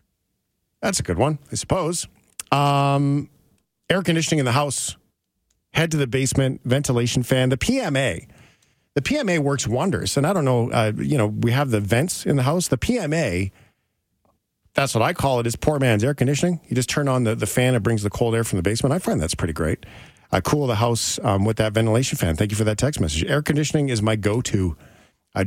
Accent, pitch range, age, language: American, 110-145 Hz, 40-59, English